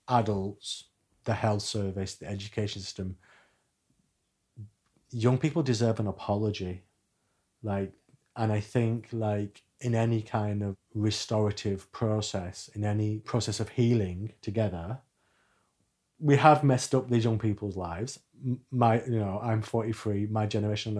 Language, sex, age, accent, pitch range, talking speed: English, male, 30-49, British, 100-125 Hz, 130 wpm